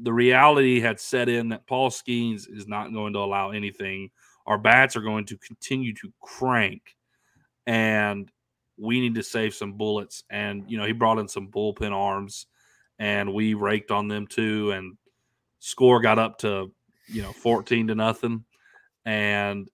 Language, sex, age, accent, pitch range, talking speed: English, male, 30-49, American, 105-125 Hz, 165 wpm